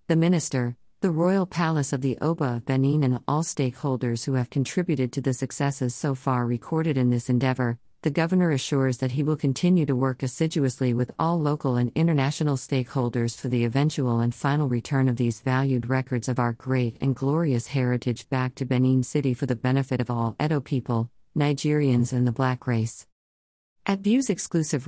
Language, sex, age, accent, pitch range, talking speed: English, female, 50-69, American, 125-155 Hz, 185 wpm